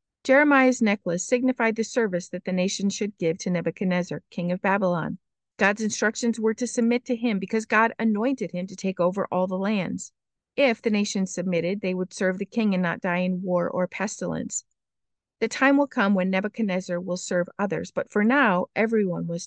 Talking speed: 190 wpm